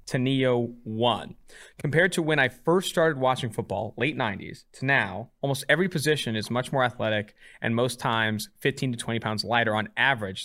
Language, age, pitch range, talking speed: English, 20-39, 110-135 Hz, 185 wpm